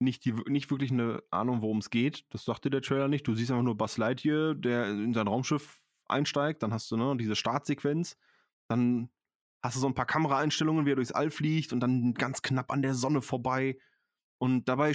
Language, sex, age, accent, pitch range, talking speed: German, male, 20-39, German, 115-150 Hz, 215 wpm